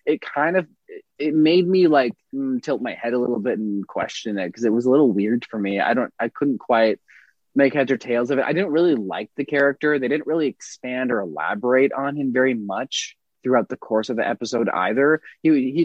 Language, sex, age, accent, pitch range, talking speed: English, male, 20-39, American, 105-140 Hz, 225 wpm